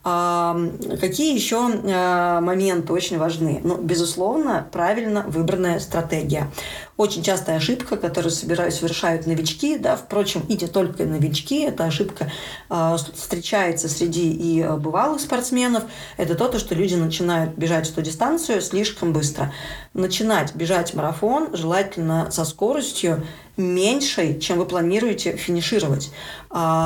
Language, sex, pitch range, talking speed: Russian, female, 165-205 Hz, 115 wpm